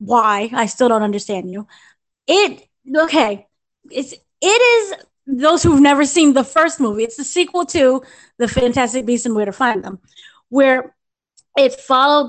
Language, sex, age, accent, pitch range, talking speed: English, female, 10-29, American, 225-285 Hz, 160 wpm